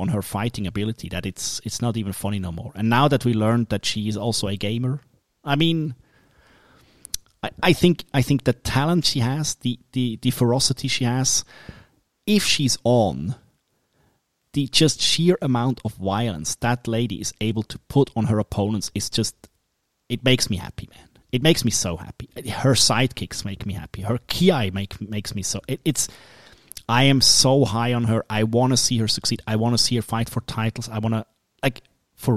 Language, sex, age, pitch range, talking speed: English, male, 30-49, 105-130 Hz, 200 wpm